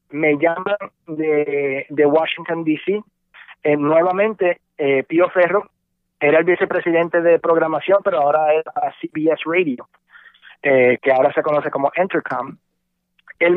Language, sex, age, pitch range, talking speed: Spanish, male, 30-49, 150-190 Hz, 130 wpm